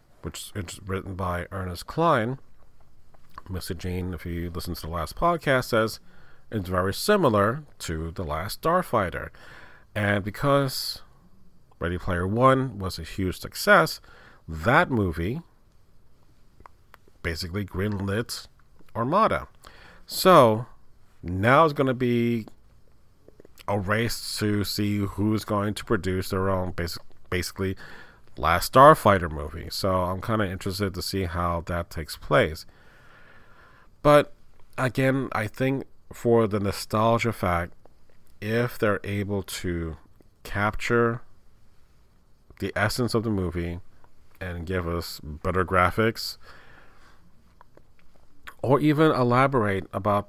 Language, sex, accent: English, male, American